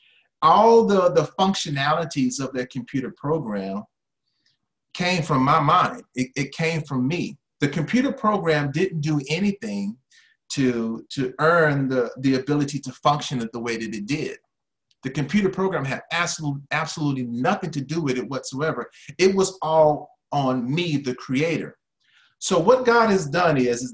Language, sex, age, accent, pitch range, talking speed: English, male, 40-59, American, 130-170 Hz, 160 wpm